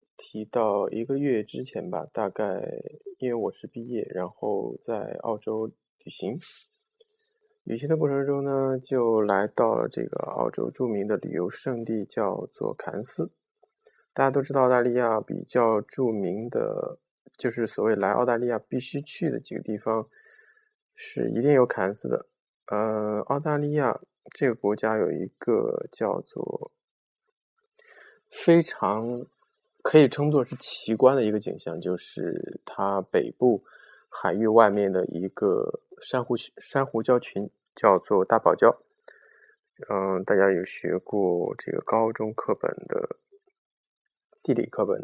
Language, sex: Chinese, male